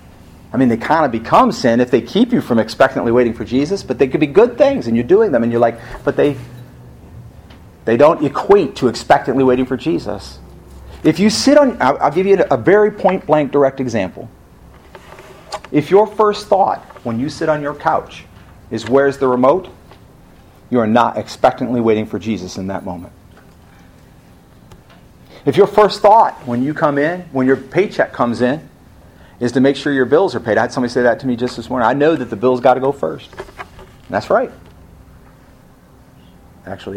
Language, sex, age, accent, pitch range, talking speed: English, male, 40-59, American, 110-155 Hz, 190 wpm